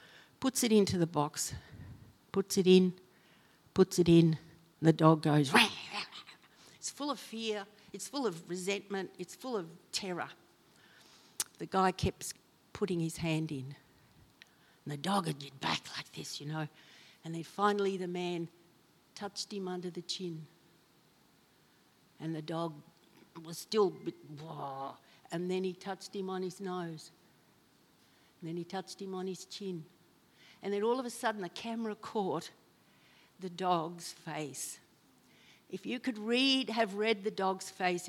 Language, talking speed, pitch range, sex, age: English, 155 wpm, 165-215 Hz, female, 60-79